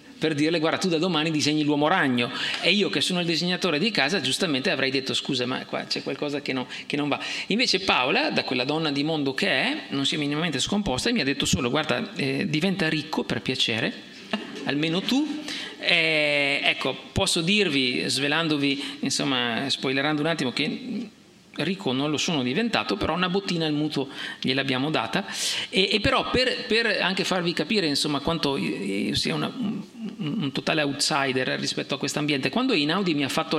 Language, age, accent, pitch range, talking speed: Italian, 50-69, native, 140-190 Hz, 190 wpm